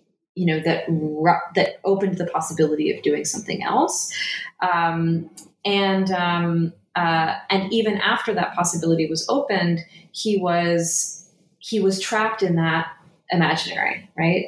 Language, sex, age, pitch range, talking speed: English, female, 20-39, 160-190 Hz, 130 wpm